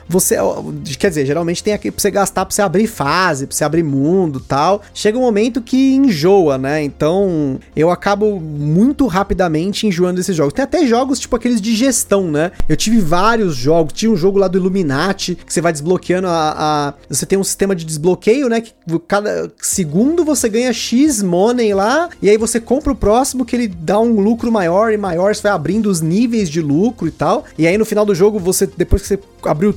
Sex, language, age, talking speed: male, Portuguese, 20-39, 210 wpm